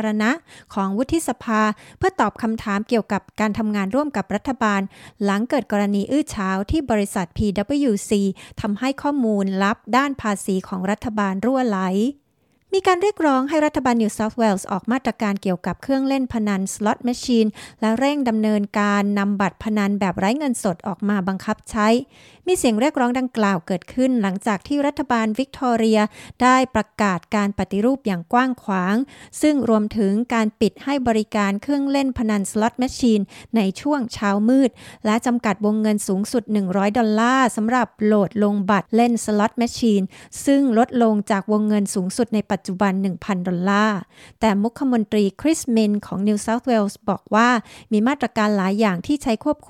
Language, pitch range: Thai, 200-245 Hz